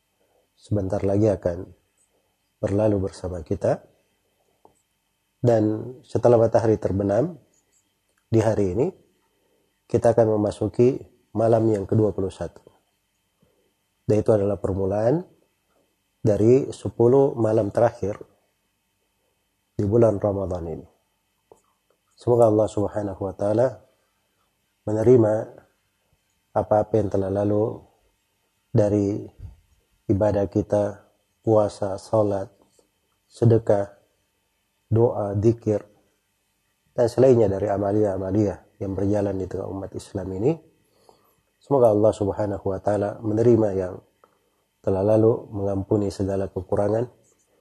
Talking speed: 90 wpm